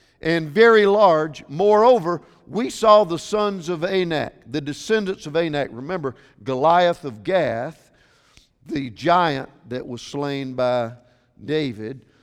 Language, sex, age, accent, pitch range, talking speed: English, male, 50-69, American, 130-190 Hz, 125 wpm